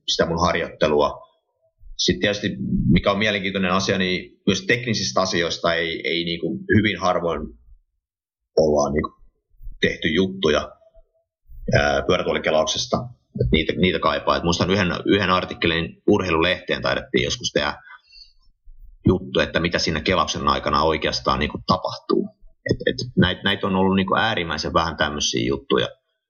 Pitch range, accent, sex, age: 80-125 Hz, native, male, 30-49